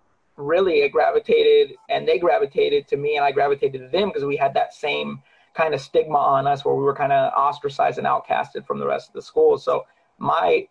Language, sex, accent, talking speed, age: English, male, American, 220 wpm, 30-49